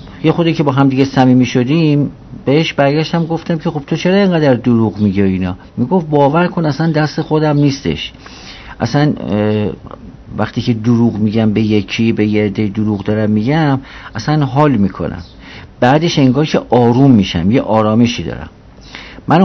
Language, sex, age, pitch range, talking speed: English, male, 50-69, 110-150 Hz, 155 wpm